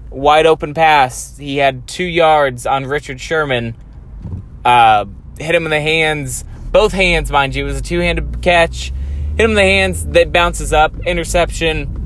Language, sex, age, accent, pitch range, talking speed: English, male, 20-39, American, 115-165 Hz, 175 wpm